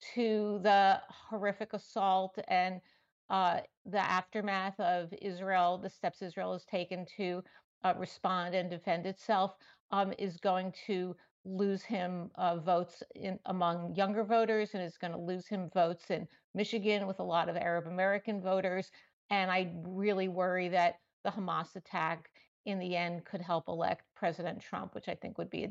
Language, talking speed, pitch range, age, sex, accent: English, 160 wpm, 185-215 Hz, 50-69, female, American